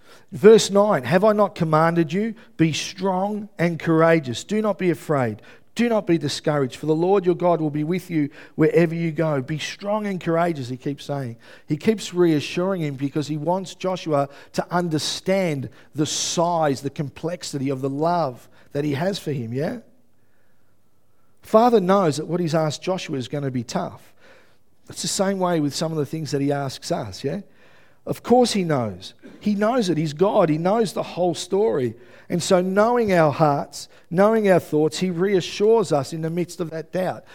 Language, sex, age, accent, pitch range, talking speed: English, male, 50-69, Australian, 150-195 Hz, 190 wpm